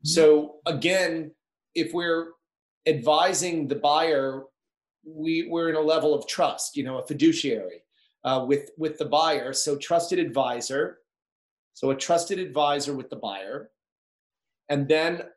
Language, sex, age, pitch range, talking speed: English, male, 40-59, 145-180 Hz, 135 wpm